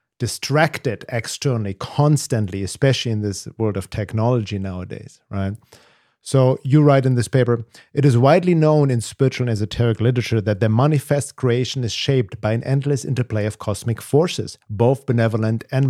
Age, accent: 50-69, German